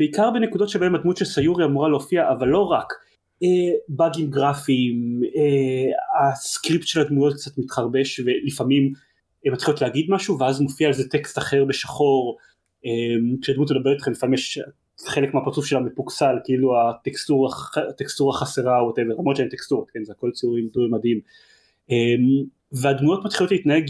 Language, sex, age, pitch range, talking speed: Hebrew, male, 30-49, 130-160 Hz, 150 wpm